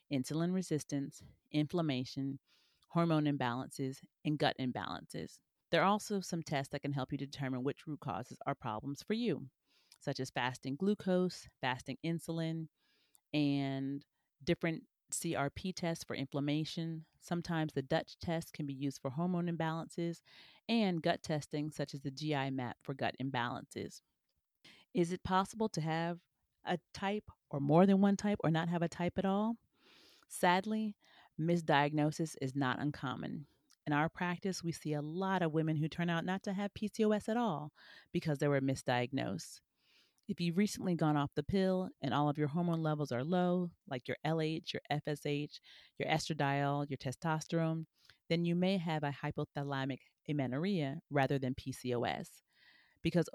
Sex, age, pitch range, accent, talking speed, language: female, 30-49, 140-175 Hz, American, 155 wpm, English